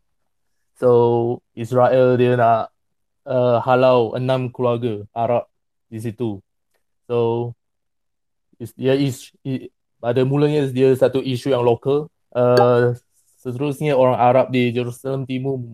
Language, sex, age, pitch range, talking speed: Malay, male, 20-39, 115-130 Hz, 100 wpm